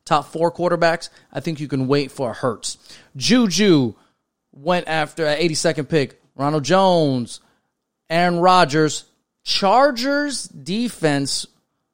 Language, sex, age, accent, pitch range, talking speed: English, male, 30-49, American, 140-175 Hz, 115 wpm